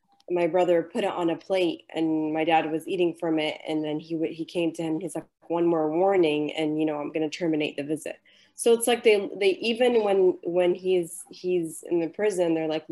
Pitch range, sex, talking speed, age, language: 160-200 Hz, female, 235 wpm, 20-39, English